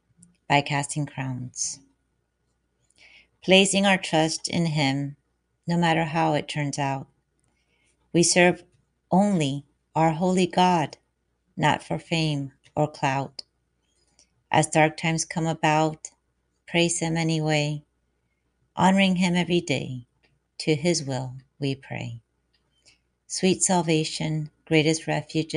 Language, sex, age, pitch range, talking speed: English, female, 40-59, 125-160 Hz, 110 wpm